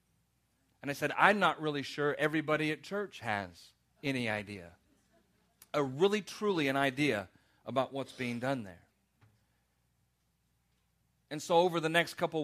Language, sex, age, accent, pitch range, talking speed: English, male, 40-59, American, 115-145 Hz, 140 wpm